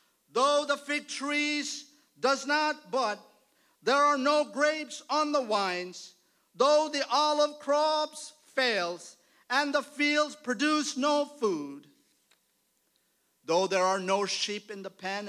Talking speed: 130 wpm